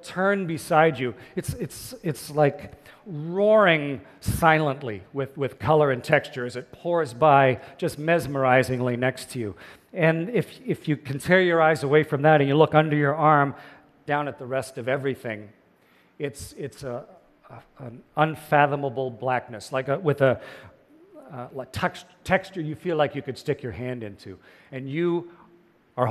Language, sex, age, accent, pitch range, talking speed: French, male, 40-59, American, 135-170 Hz, 170 wpm